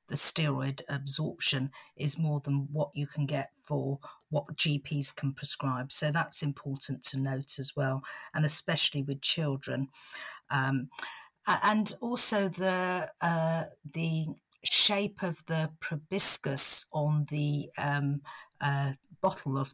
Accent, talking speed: British, 130 wpm